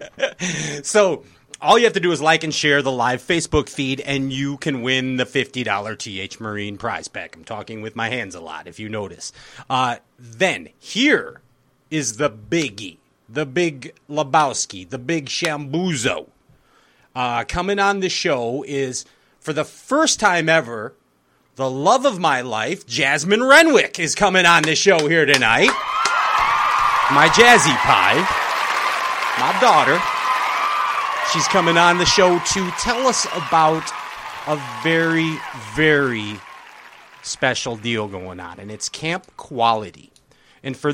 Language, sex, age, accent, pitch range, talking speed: English, male, 30-49, American, 115-165 Hz, 145 wpm